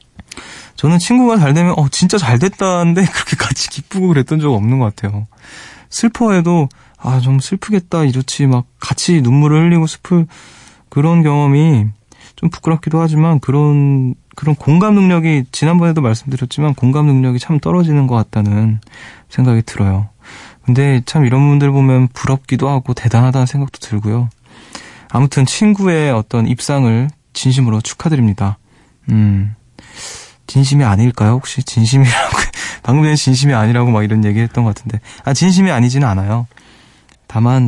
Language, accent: Korean, native